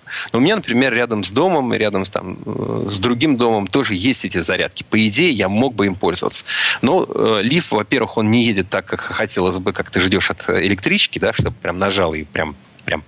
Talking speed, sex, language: 205 wpm, male, Russian